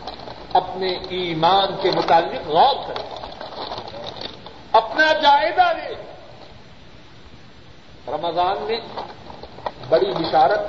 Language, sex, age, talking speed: Urdu, male, 50-69, 75 wpm